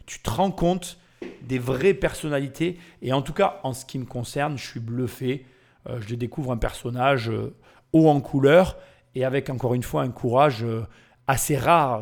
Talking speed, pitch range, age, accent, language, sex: 175 wpm, 125-180 Hz, 30-49, French, French, male